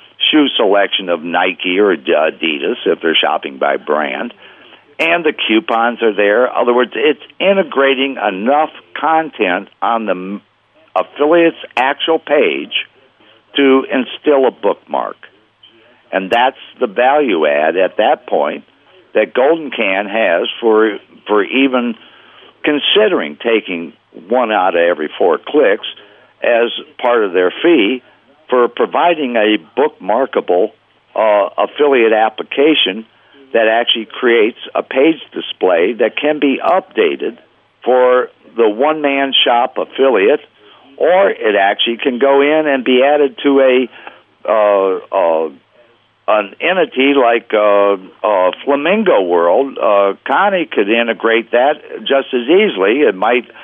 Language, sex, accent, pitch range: English, male, American, 105-140 Hz